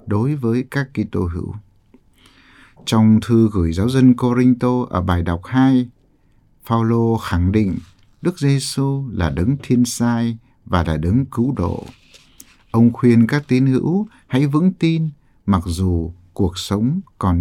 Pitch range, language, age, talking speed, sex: 95-130 Hz, Vietnamese, 60-79, 145 wpm, male